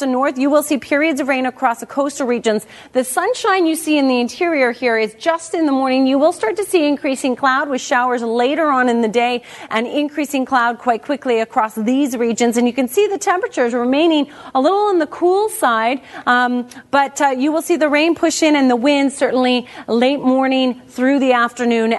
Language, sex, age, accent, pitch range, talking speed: English, female, 30-49, American, 235-305 Hz, 215 wpm